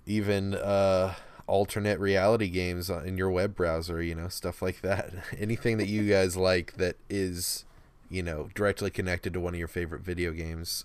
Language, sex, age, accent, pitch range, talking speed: English, male, 20-39, American, 90-105 Hz, 175 wpm